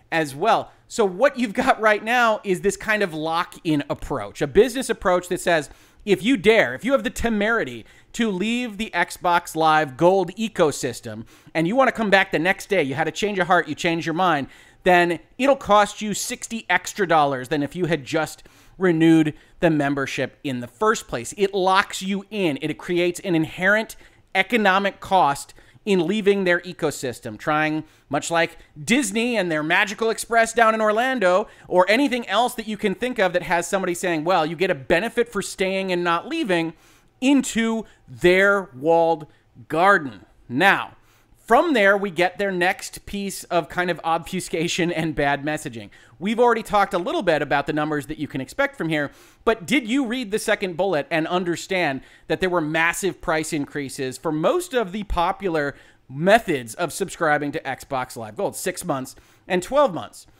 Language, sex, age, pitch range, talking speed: English, male, 30-49, 155-215 Hz, 185 wpm